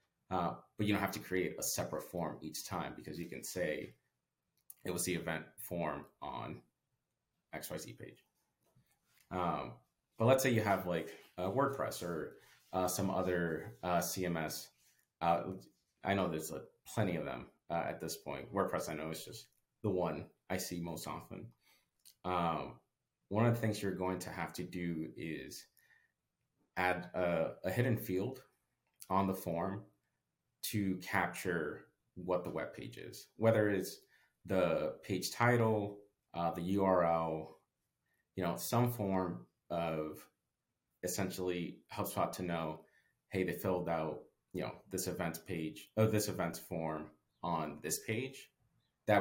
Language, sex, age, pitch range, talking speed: English, male, 30-49, 80-100 Hz, 150 wpm